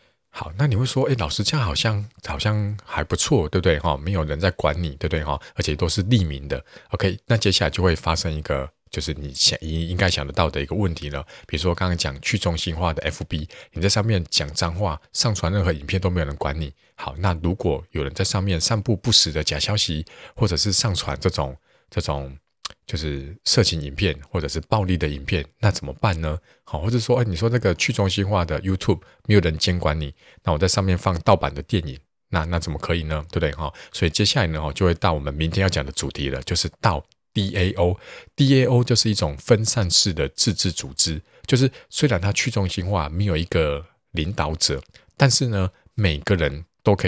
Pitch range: 80-105 Hz